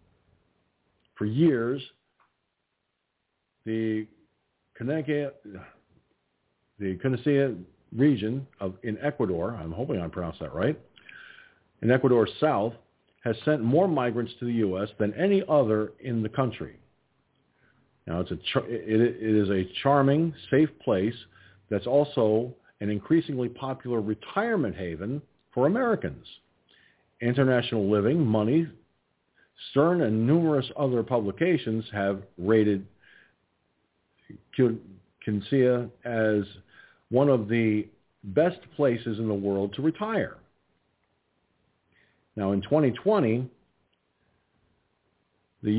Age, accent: 50-69, American